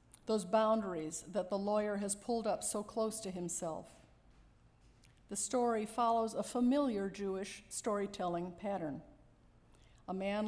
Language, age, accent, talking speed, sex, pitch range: English, 50-69, American, 125 wpm, female, 195-230 Hz